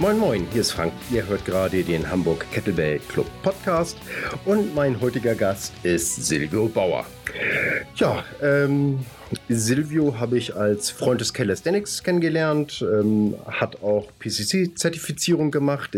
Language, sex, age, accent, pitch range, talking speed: German, male, 40-59, German, 100-140 Hz, 130 wpm